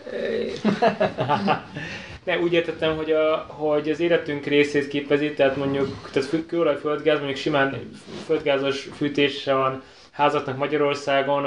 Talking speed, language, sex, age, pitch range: 110 wpm, Hungarian, male, 20-39, 135-155 Hz